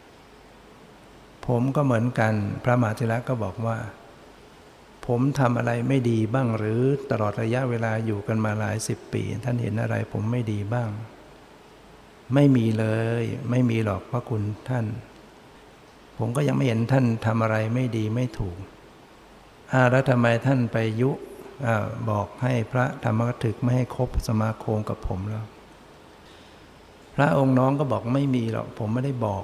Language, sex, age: Thai, male, 60-79